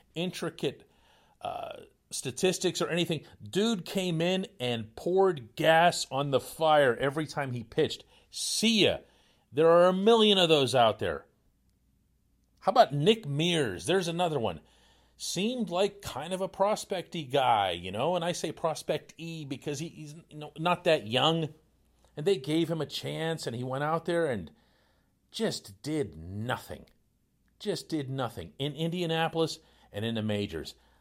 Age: 40-59